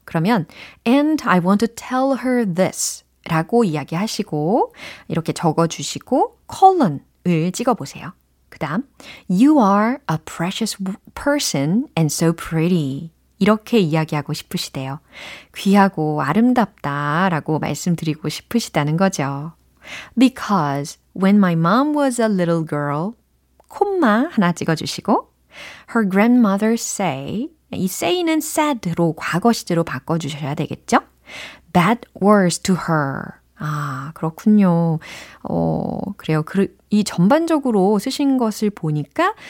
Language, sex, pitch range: Korean, female, 155-230 Hz